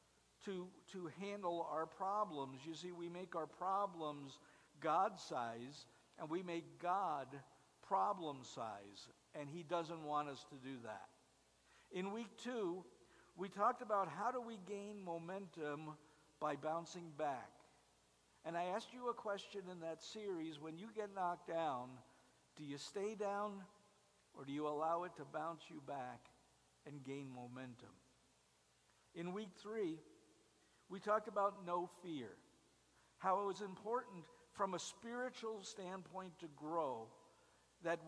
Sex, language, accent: male, English, American